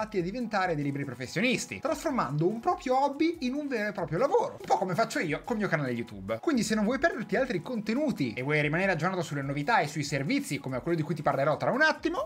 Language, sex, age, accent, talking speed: Italian, male, 20-39, native, 245 wpm